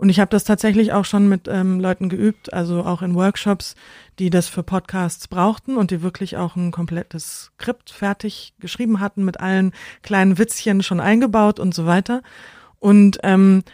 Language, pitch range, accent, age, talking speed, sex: German, 180-205 Hz, German, 30-49, 180 wpm, female